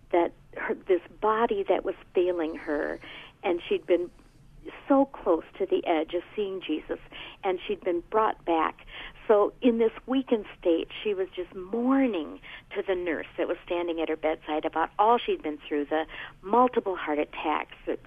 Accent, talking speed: American, 165 wpm